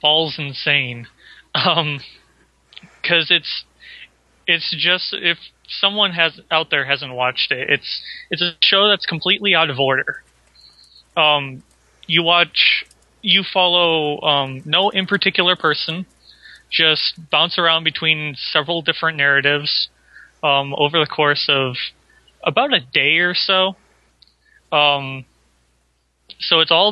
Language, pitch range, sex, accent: English, 145-180 Hz, male, American